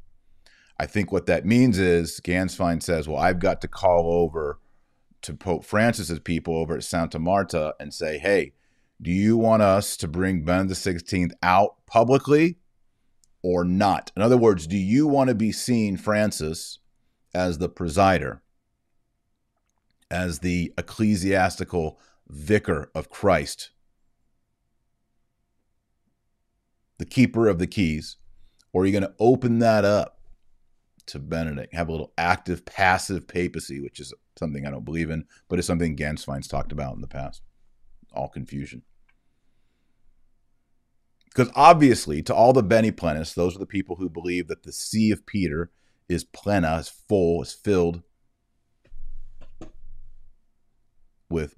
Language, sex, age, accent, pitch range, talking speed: English, male, 40-59, American, 85-105 Hz, 140 wpm